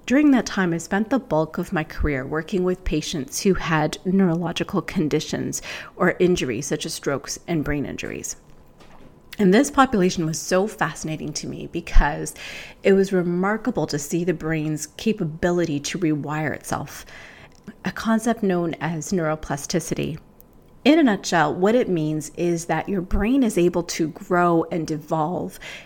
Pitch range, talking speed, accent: 160-195 Hz, 155 wpm, American